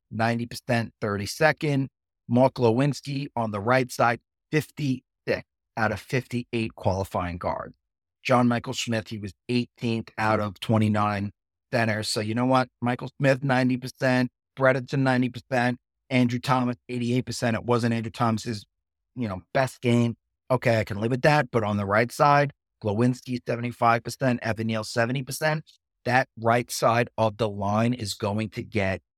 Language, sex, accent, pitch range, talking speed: English, male, American, 110-130 Hz, 155 wpm